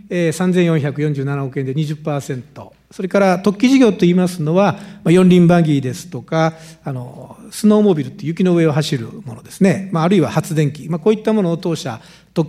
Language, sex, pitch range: Japanese, male, 140-190 Hz